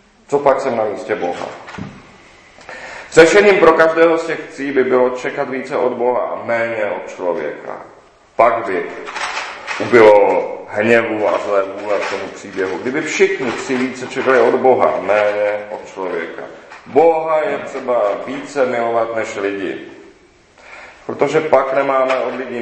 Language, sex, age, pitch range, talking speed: Czech, male, 40-59, 110-155 Hz, 145 wpm